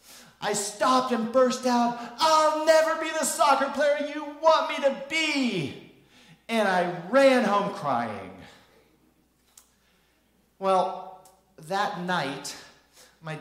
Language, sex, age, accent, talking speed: English, male, 40-59, American, 110 wpm